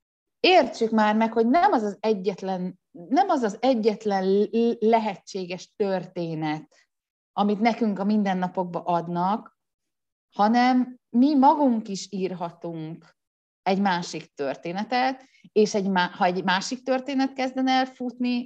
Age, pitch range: 30-49, 170-225 Hz